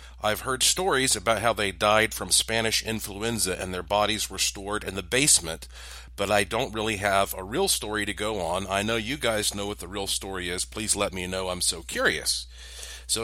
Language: English